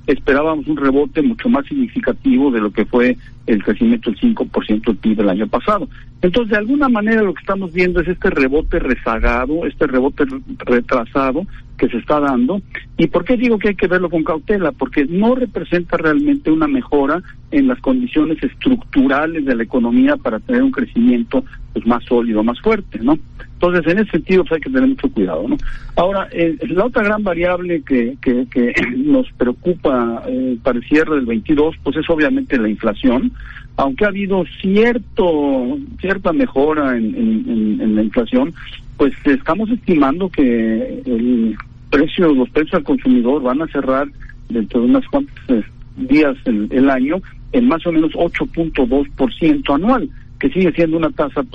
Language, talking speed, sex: Spanish, 165 wpm, male